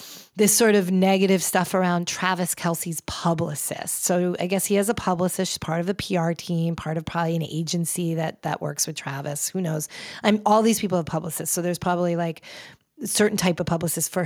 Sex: female